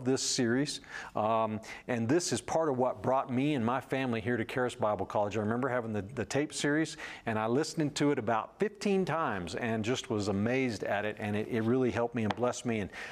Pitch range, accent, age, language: 115-140 Hz, American, 50-69, English